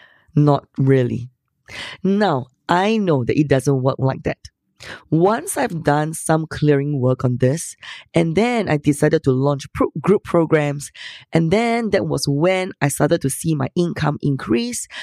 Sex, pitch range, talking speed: female, 140-180 Hz, 160 wpm